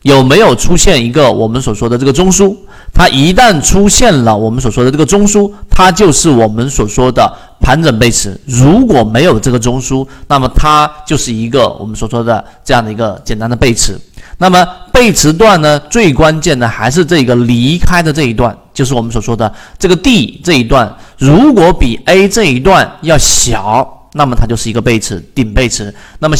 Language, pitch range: Chinese, 115-155 Hz